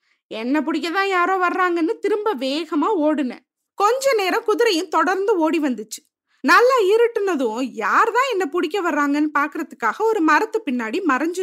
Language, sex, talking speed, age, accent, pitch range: Tamil, female, 125 wpm, 20-39, native, 285-425 Hz